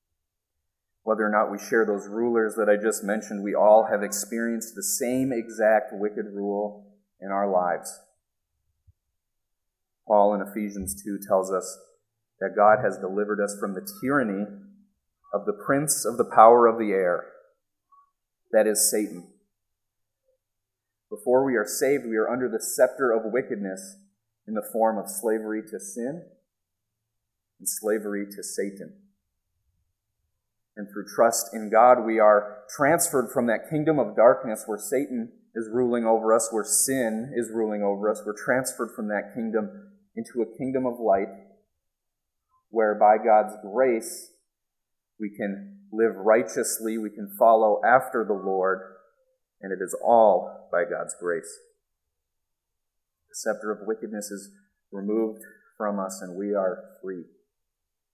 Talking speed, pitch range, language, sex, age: 145 wpm, 100-115 Hz, English, male, 30-49